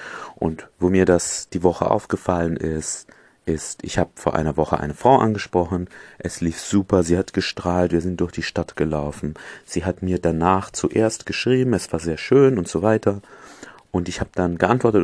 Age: 30-49